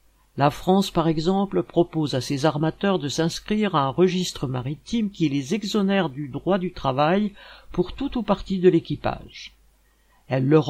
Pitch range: 140-180 Hz